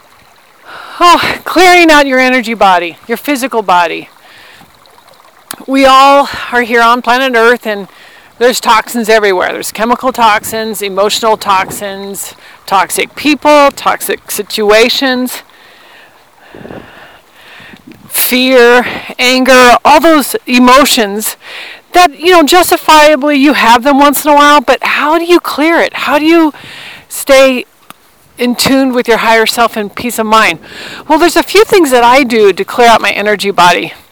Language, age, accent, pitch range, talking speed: English, 40-59, American, 220-285 Hz, 140 wpm